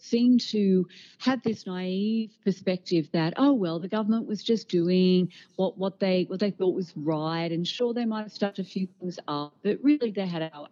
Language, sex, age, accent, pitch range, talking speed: English, female, 50-69, Australian, 155-210 Hz, 205 wpm